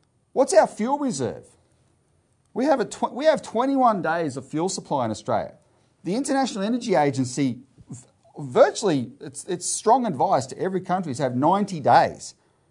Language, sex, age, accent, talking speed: English, male, 40-59, Australian, 155 wpm